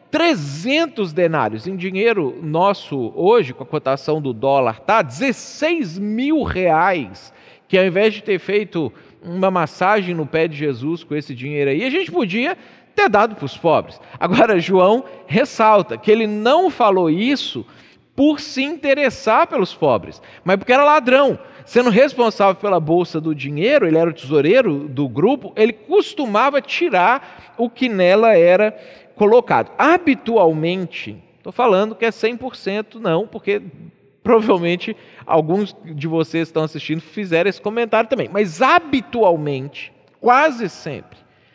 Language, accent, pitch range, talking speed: Portuguese, Brazilian, 155-235 Hz, 140 wpm